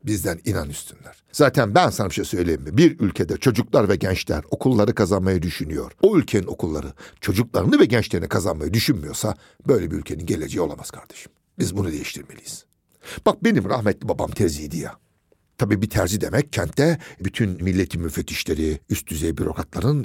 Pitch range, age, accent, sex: 90-140 Hz, 60-79, native, male